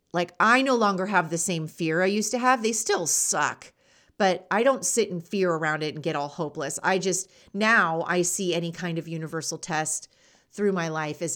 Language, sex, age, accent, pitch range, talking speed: English, female, 30-49, American, 165-205 Hz, 215 wpm